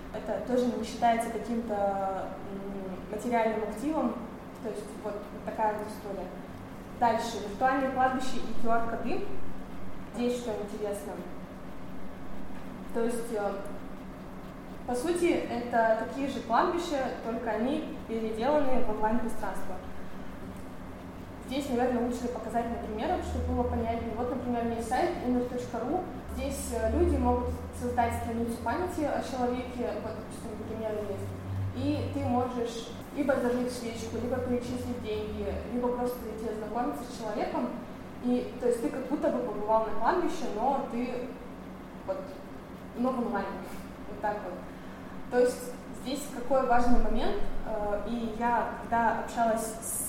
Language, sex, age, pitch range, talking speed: Russian, female, 20-39, 210-245 Hz, 120 wpm